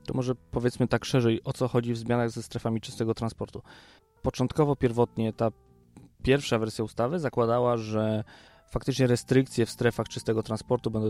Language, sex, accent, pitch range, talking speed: Polish, male, native, 110-125 Hz, 155 wpm